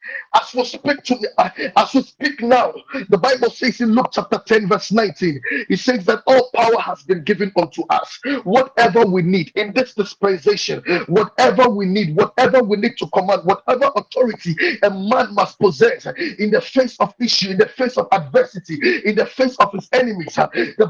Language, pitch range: English, 210-270 Hz